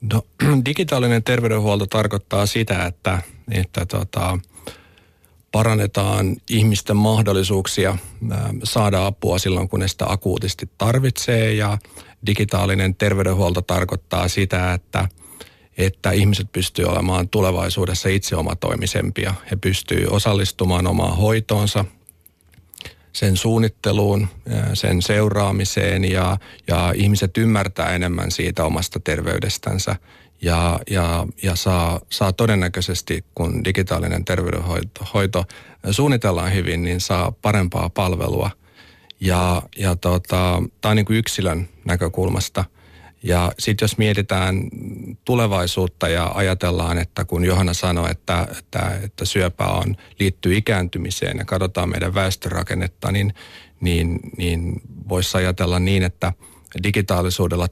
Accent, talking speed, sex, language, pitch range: native, 105 wpm, male, Finnish, 90-105 Hz